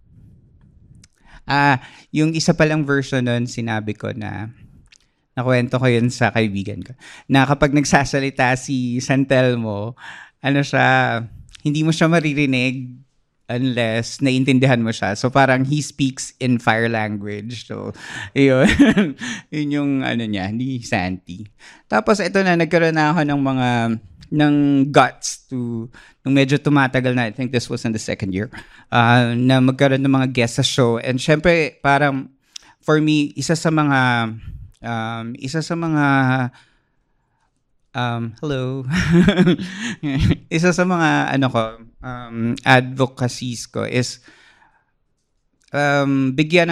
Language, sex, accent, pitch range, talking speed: Filipino, male, native, 115-145 Hz, 130 wpm